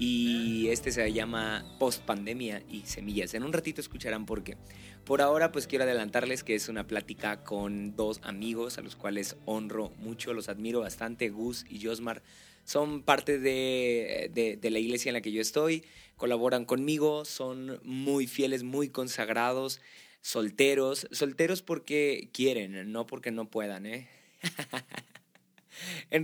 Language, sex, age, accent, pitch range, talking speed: Spanish, male, 20-39, Mexican, 110-140 Hz, 150 wpm